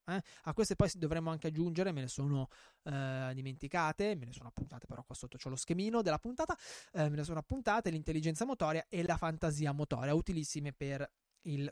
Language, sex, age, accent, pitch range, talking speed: Italian, male, 20-39, native, 155-215 Hz, 195 wpm